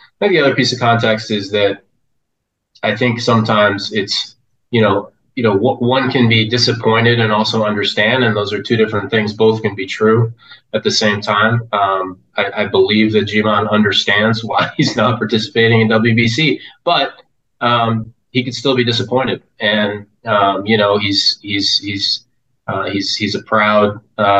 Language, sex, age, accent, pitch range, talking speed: English, male, 20-39, American, 100-115 Hz, 175 wpm